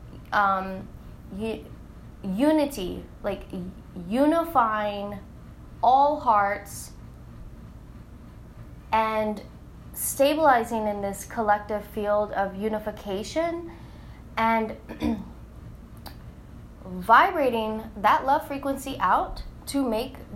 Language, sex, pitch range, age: English, female, 205-270 Hz, 10-29